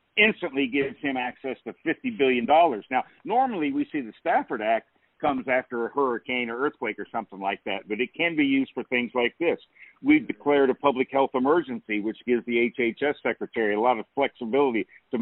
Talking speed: 195 wpm